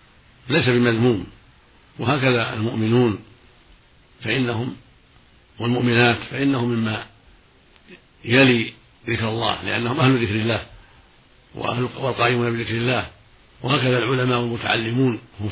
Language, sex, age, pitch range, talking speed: Arabic, male, 60-79, 110-125 Hz, 90 wpm